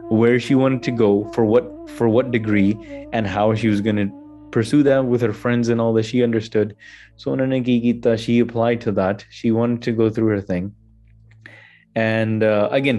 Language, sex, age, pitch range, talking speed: English, male, 20-39, 110-130 Hz, 190 wpm